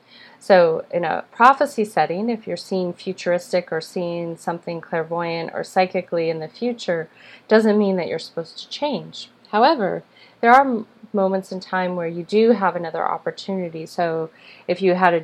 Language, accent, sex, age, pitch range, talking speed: English, American, female, 30-49, 165-210 Hz, 170 wpm